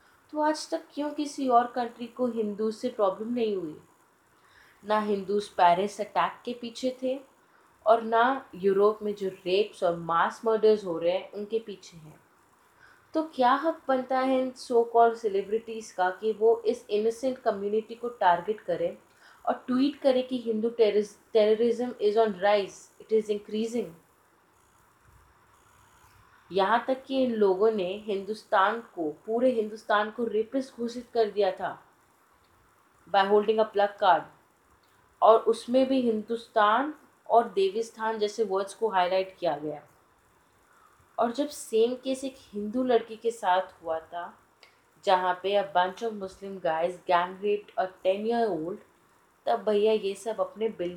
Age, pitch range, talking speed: 30-49, 195-240 Hz, 145 wpm